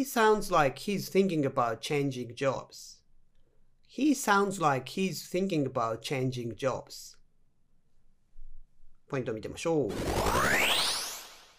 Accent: native